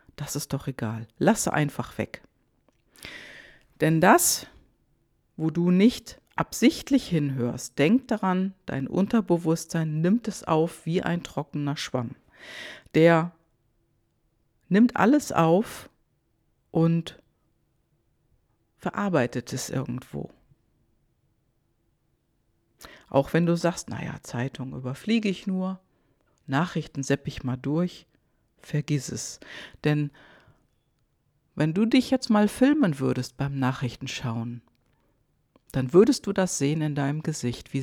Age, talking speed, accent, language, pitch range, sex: 50-69, 110 wpm, German, German, 135-185 Hz, female